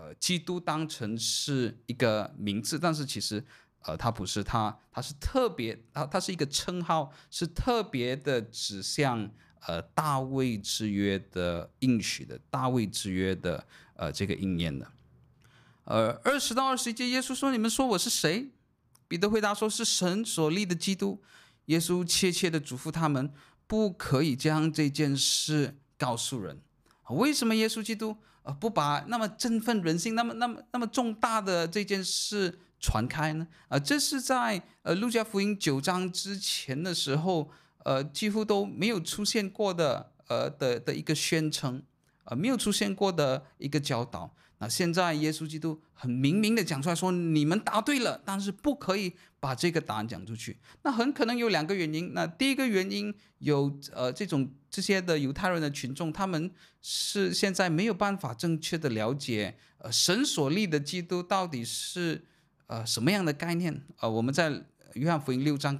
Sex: male